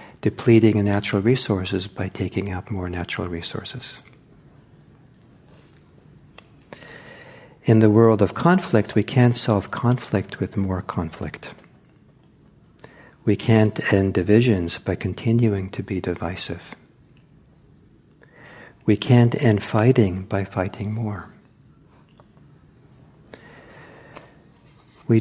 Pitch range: 95-120 Hz